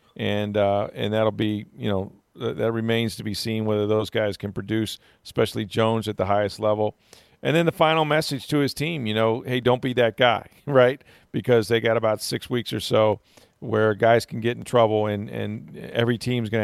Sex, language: male, English